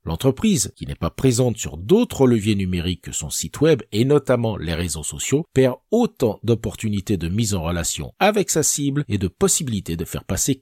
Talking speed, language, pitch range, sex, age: 190 wpm, French, 95-150 Hz, male, 50-69